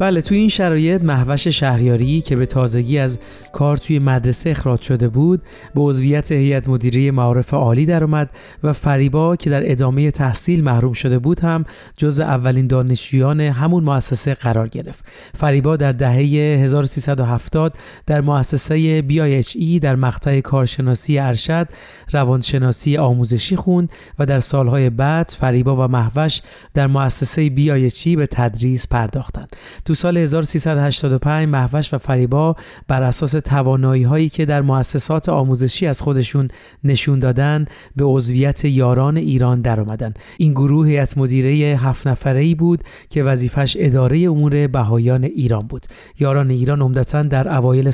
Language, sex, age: Persian, male, 40-59